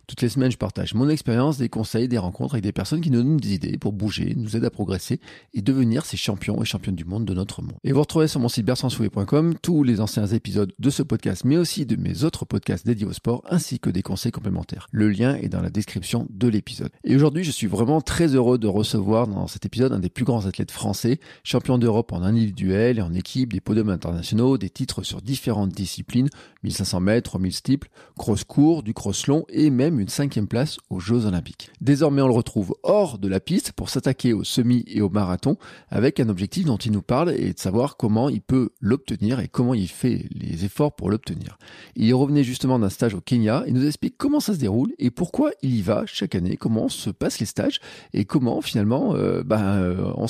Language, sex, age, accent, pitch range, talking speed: French, male, 40-59, French, 100-130 Hz, 225 wpm